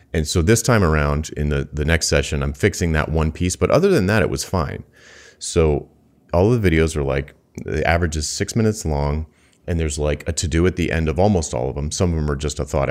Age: 30-49